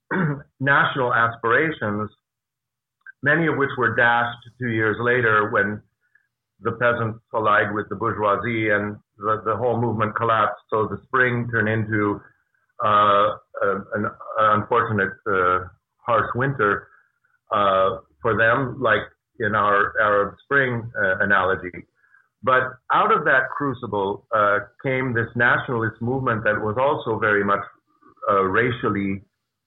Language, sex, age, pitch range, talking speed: English, male, 50-69, 105-120 Hz, 125 wpm